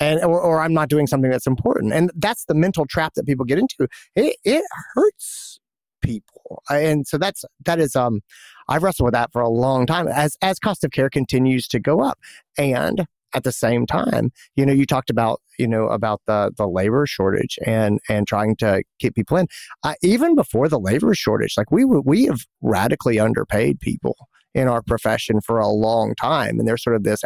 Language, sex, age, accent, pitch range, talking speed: English, male, 30-49, American, 110-155 Hz, 205 wpm